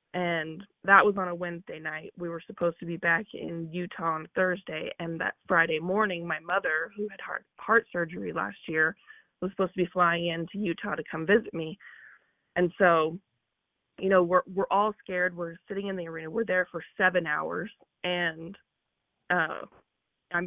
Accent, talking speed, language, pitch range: American, 180 wpm, English, 170-200 Hz